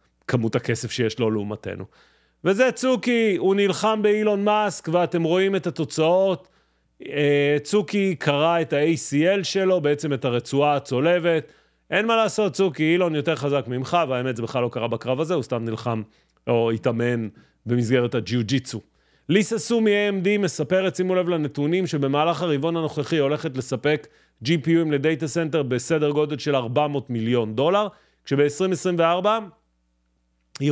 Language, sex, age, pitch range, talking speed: Hebrew, male, 30-49, 130-175 Hz, 125 wpm